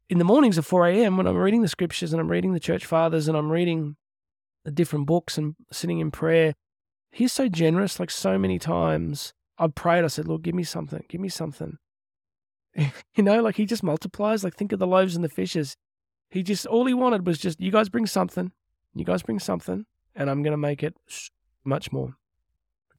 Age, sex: 20-39, male